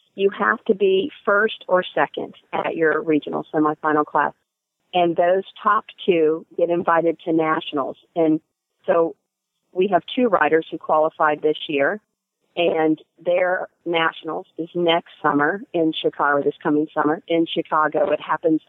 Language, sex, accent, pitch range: English, female, American, 155-190 Hz